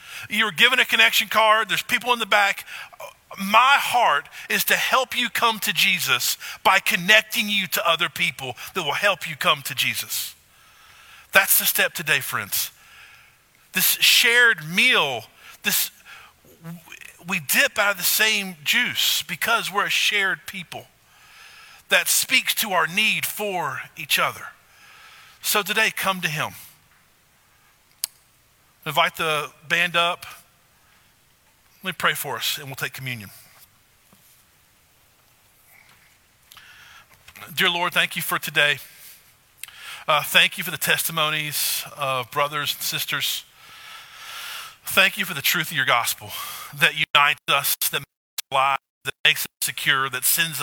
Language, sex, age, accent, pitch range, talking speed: English, male, 50-69, American, 145-220 Hz, 140 wpm